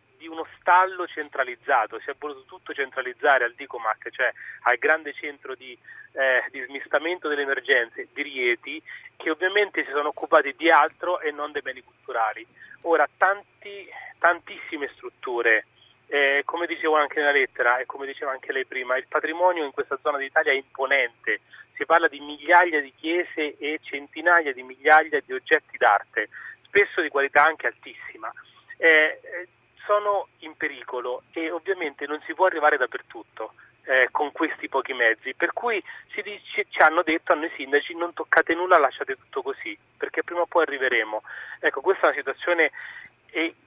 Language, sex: Italian, male